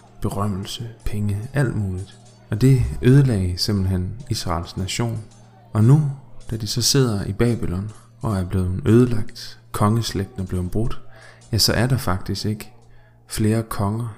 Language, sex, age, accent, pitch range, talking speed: Danish, male, 20-39, native, 100-120 Hz, 145 wpm